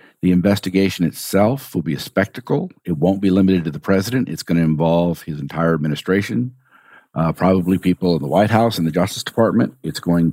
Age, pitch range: 50-69, 85-100 Hz